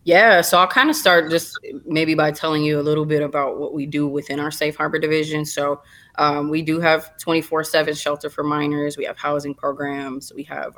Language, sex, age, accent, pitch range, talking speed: English, female, 20-39, American, 145-160 Hz, 210 wpm